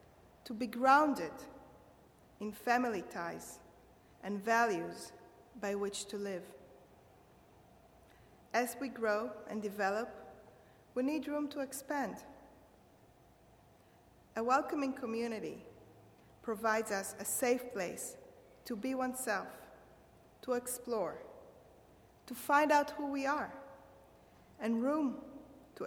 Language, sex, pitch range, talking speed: English, female, 210-285 Hz, 100 wpm